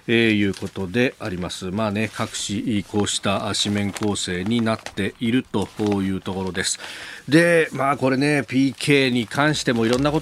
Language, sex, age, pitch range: Japanese, male, 40-59, 95-125 Hz